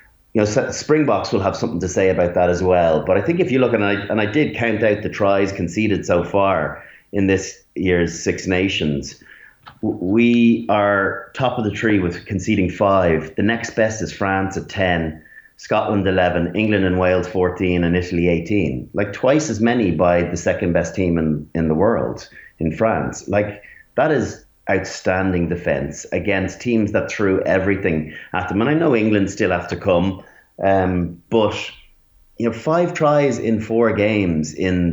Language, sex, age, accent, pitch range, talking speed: English, male, 30-49, Irish, 85-105 Hz, 180 wpm